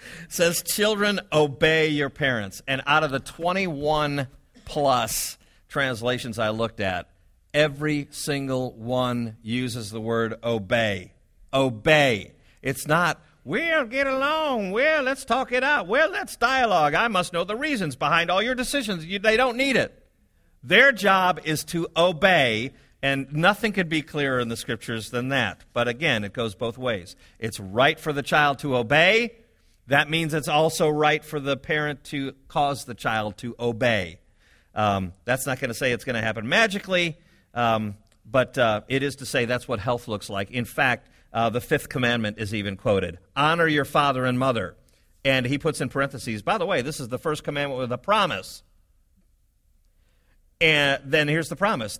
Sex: male